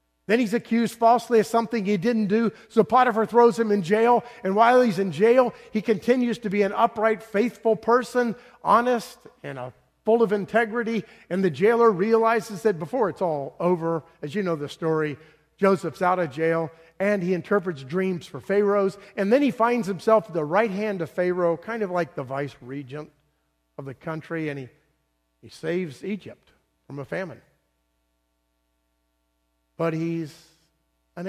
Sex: male